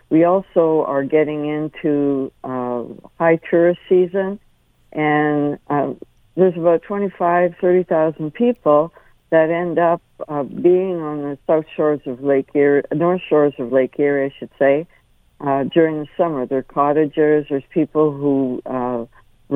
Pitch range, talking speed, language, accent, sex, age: 135-160 Hz, 145 wpm, English, American, female, 60-79